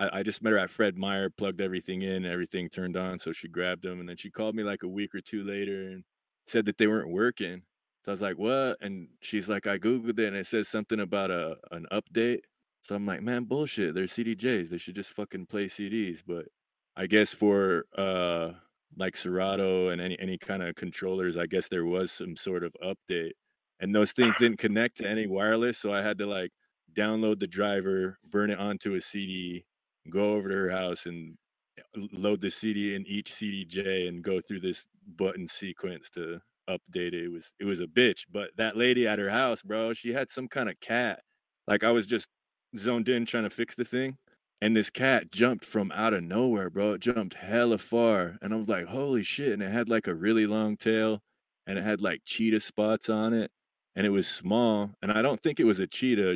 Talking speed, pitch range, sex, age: 220 wpm, 95-110 Hz, male, 20-39